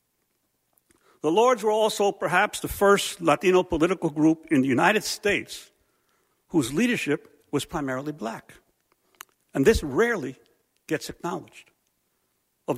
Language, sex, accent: English, male, American